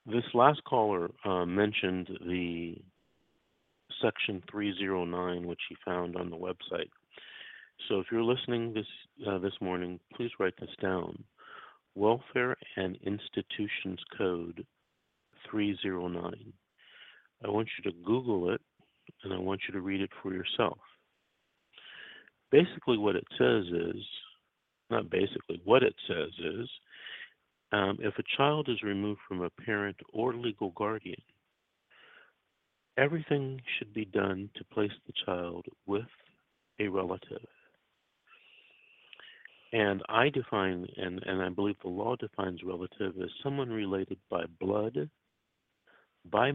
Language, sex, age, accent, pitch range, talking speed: English, male, 50-69, American, 90-110 Hz, 125 wpm